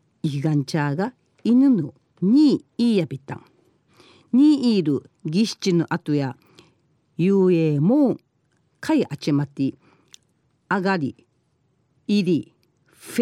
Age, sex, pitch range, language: 50-69, female, 145-205 Hz, Japanese